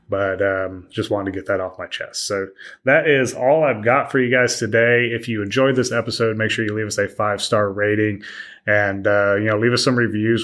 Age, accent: 30-49, American